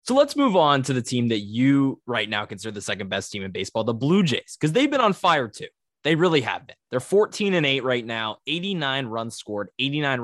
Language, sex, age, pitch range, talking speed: English, male, 20-39, 115-150 Hz, 240 wpm